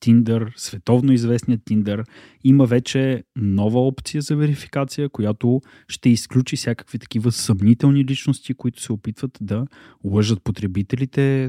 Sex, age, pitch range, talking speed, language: male, 20-39, 110-140 Hz, 120 wpm, Bulgarian